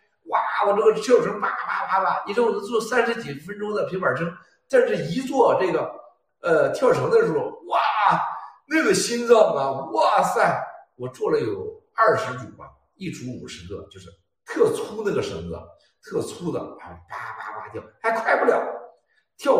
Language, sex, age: Chinese, male, 60-79